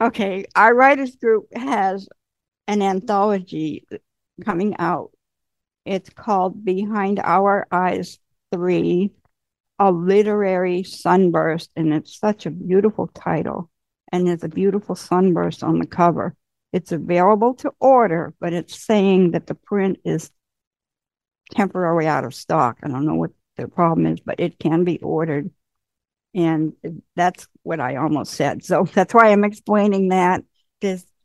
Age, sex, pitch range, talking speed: 60-79, female, 165-200 Hz, 140 wpm